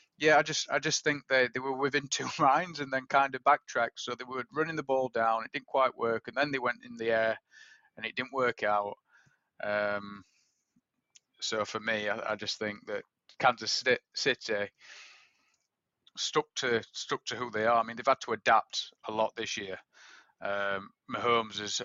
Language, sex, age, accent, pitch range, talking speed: English, male, 30-49, British, 105-125 Hz, 195 wpm